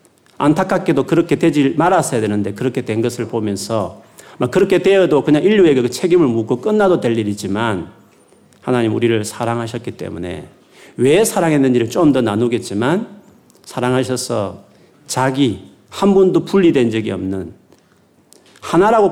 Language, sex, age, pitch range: Korean, male, 40-59, 115-170 Hz